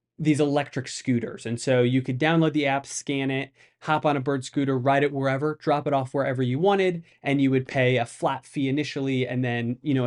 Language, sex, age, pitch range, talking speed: English, male, 20-39, 125-155 Hz, 225 wpm